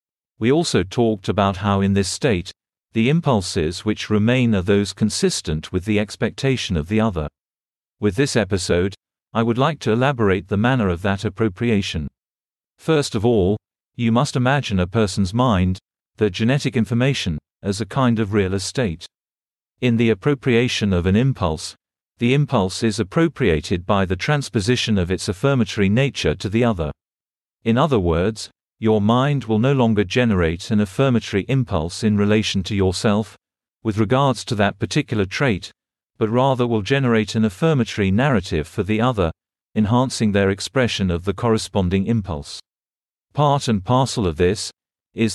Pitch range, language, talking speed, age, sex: 95-125 Hz, English, 155 wpm, 40-59, male